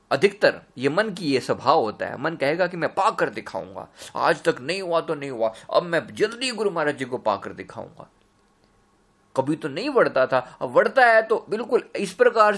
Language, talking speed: Hindi, 200 wpm